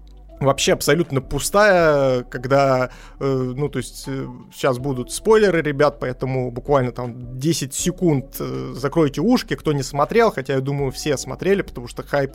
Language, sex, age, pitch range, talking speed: Russian, male, 30-49, 130-160 Hz, 155 wpm